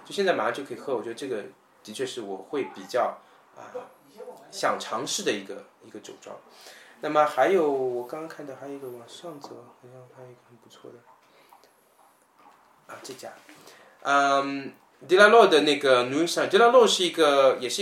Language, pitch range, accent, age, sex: Chinese, 125-185 Hz, native, 20-39, male